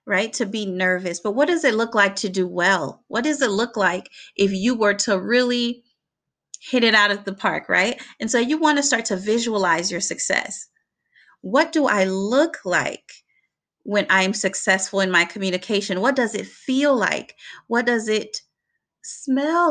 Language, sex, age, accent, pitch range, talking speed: English, female, 30-49, American, 195-270 Hz, 185 wpm